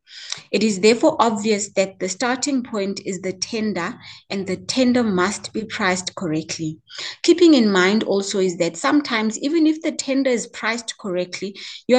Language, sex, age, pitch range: English, female, 20-39, 180-225 Hz